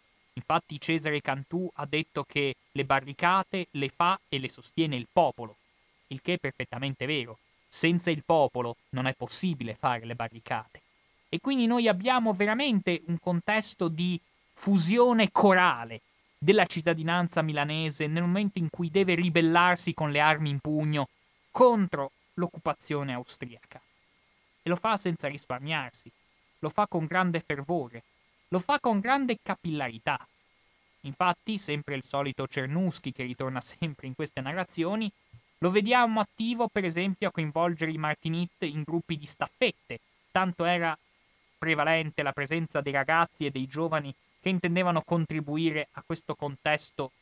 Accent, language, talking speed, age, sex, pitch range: native, Italian, 140 wpm, 20-39, male, 140-175 Hz